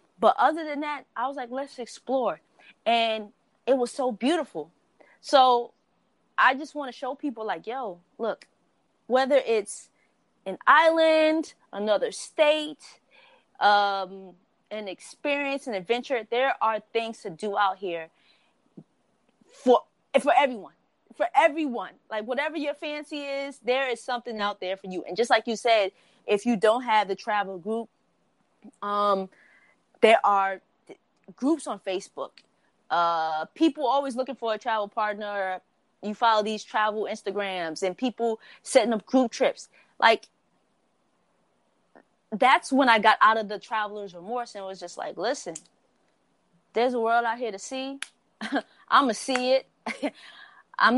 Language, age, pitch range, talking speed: English, 20-39, 205-265 Hz, 145 wpm